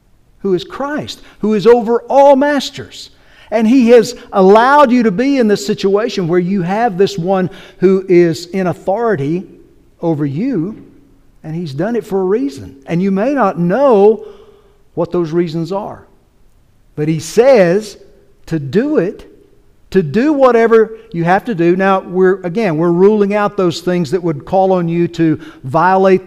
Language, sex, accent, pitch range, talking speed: English, male, American, 165-220 Hz, 165 wpm